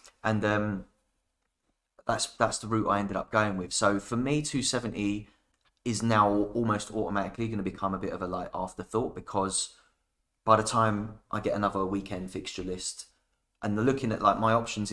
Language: English